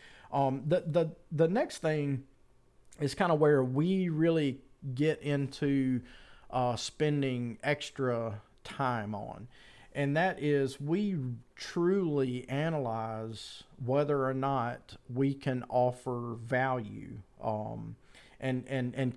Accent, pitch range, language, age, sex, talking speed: American, 125-150 Hz, English, 40-59, male, 115 wpm